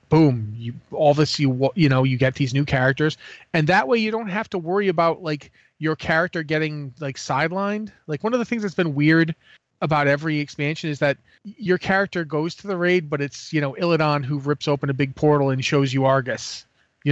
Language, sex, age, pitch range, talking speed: English, male, 30-49, 135-165 Hz, 210 wpm